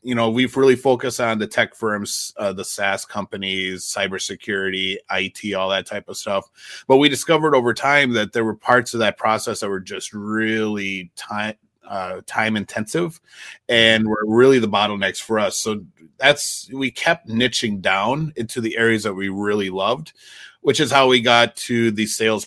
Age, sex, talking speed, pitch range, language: 30-49, male, 180 wpm, 105-120 Hz, English